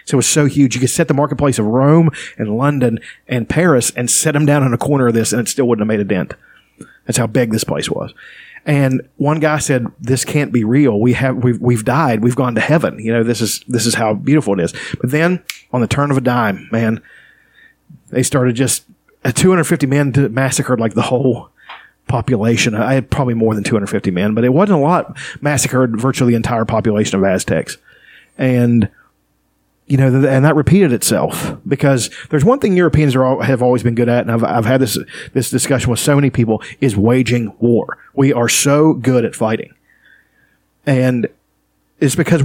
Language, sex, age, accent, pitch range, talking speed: English, male, 40-59, American, 120-145 Hz, 205 wpm